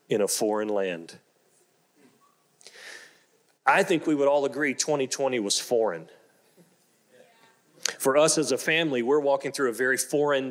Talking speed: 135 wpm